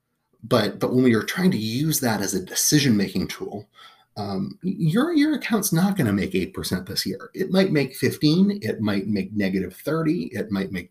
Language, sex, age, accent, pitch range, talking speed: English, male, 30-49, American, 95-140 Hz, 205 wpm